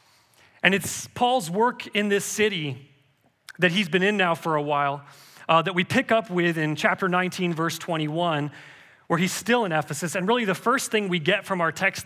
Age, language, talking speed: 30-49, English, 205 wpm